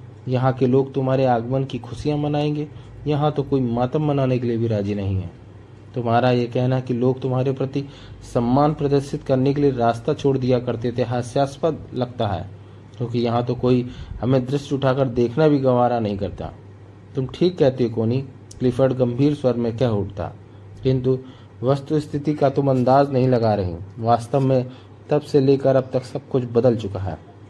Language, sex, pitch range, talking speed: Hindi, male, 115-135 Hz, 120 wpm